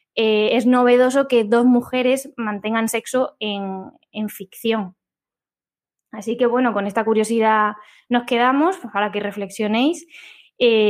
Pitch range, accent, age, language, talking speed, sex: 210-245 Hz, Spanish, 20-39, Spanish, 130 wpm, female